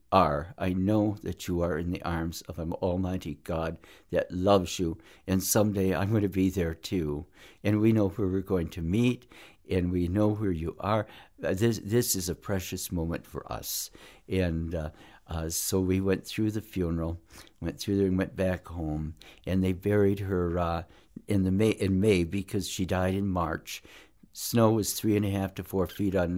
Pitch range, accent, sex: 85-100 Hz, American, male